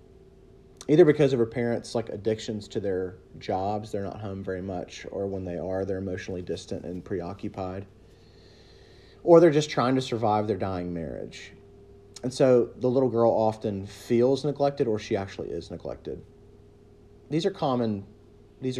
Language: English